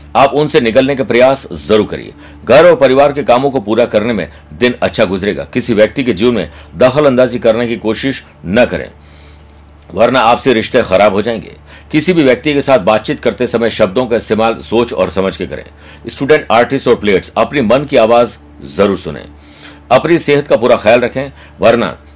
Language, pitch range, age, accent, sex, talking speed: Hindi, 90-135 Hz, 60-79, native, male, 190 wpm